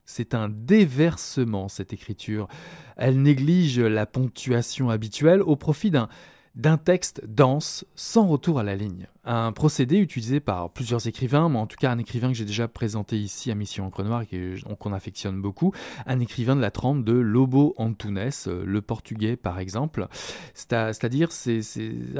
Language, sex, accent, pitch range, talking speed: French, male, French, 110-145 Hz, 170 wpm